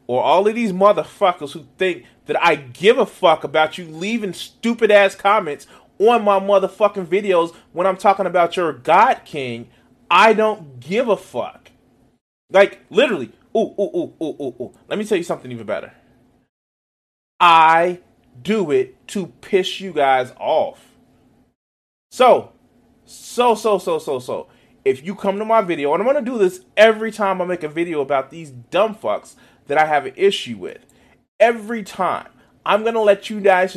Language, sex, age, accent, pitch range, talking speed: English, male, 30-49, American, 150-215 Hz, 175 wpm